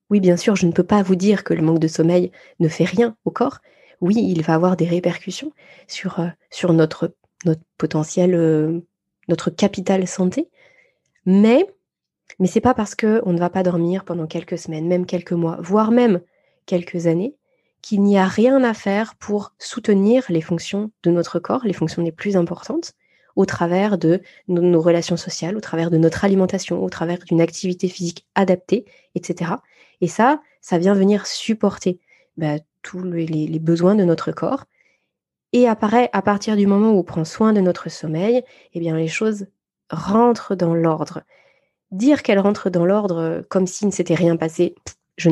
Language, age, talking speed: French, 20-39, 180 wpm